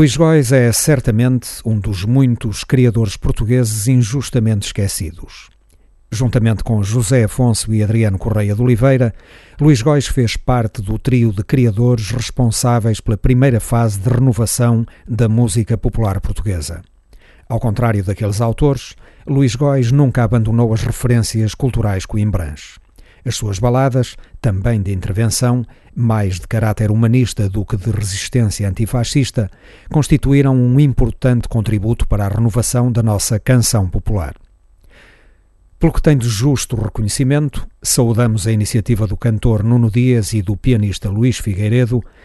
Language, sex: Portuguese, male